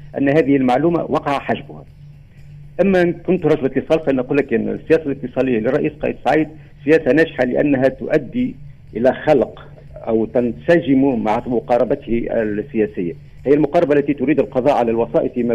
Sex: male